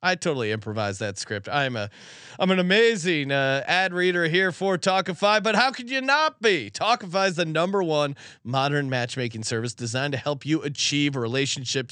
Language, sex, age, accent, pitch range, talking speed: English, male, 30-49, American, 145-190 Hz, 180 wpm